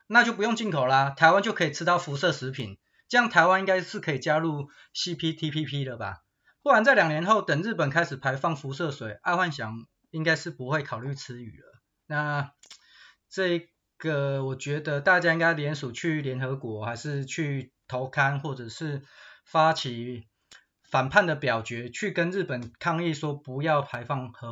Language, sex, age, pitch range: Chinese, male, 30-49, 130-175 Hz